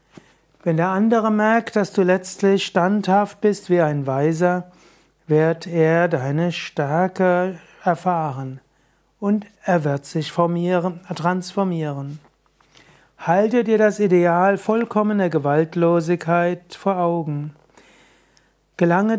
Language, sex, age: German, male, 60-79